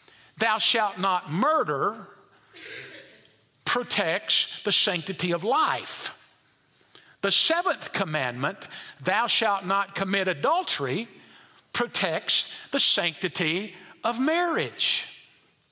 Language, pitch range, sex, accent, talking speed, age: English, 180-255 Hz, male, American, 85 wpm, 50-69